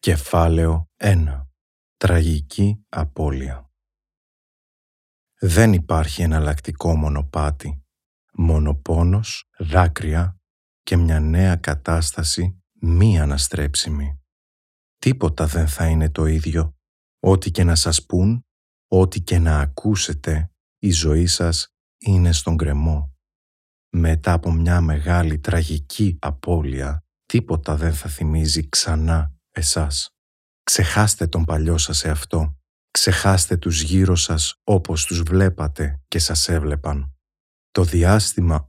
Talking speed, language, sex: 105 wpm, Greek, male